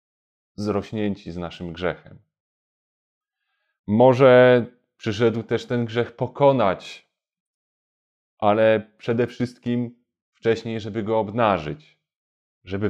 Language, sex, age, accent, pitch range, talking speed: Polish, male, 30-49, native, 100-120 Hz, 85 wpm